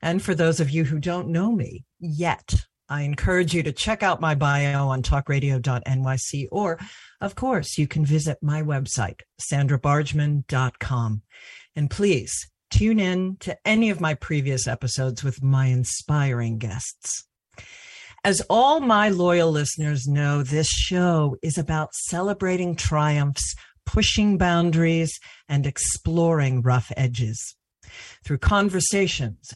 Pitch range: 135-185 Hz